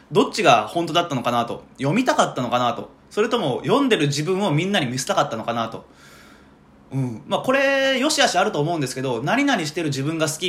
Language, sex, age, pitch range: Japanese, male, 20-39, 120-185 Hz